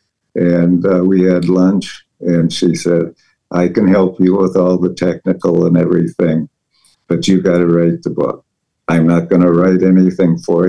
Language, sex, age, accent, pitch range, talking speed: English, male, 60-79, American, 85-95 Hz, 180 wpm